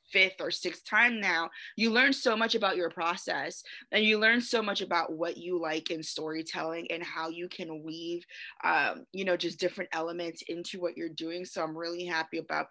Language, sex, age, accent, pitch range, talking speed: English, female, 20-39, American, 170-215 Hz, 205 wpm